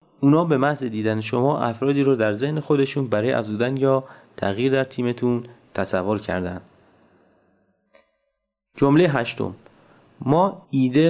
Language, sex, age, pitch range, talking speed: Persian, male, 30-49, 105-150 Hz, 120 wpm